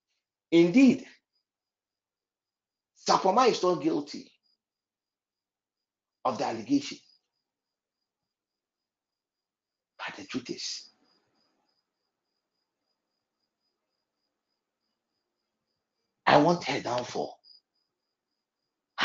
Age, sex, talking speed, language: 60-79, male, 50 wpm, English